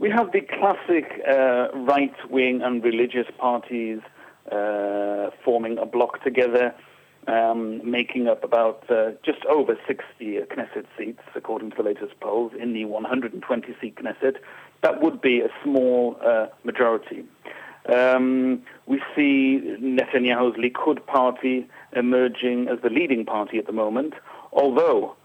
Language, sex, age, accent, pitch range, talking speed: English, male, 50-69, British, 115-135 Hz, 130 wpm